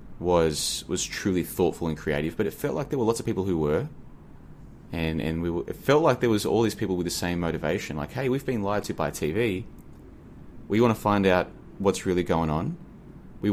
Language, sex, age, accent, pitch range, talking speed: English, male, 20-39, Australian, 80-115 Hz, 225 wpm